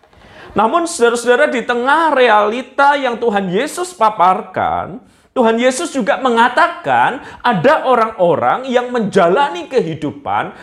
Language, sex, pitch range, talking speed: Malay, male, 200-275 Hz, 100 wpm